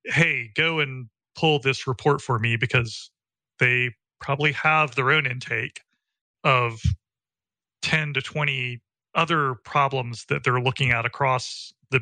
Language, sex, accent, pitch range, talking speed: English, male, American, 120-140 Hz, 135 wpm